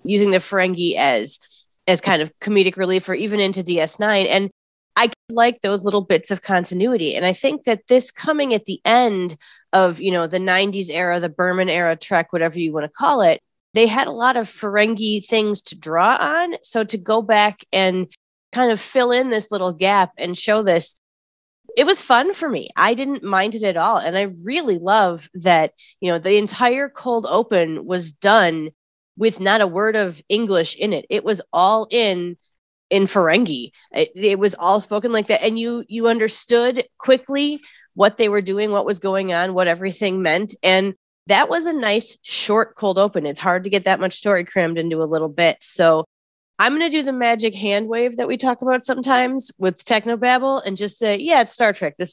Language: English